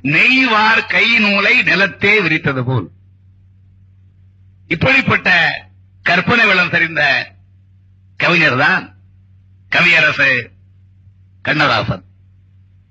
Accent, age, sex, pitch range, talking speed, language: native, 60-79, male, 95-160 Hz, 60 wpm, Tamil